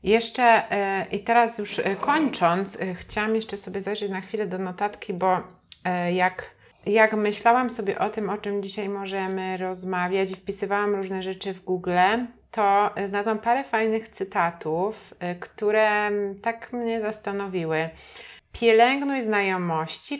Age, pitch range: 30-49, 185-225 Hz